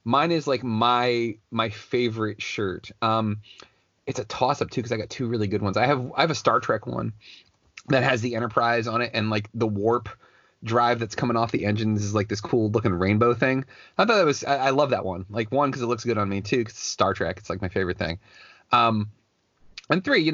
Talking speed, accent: 240 wpm, American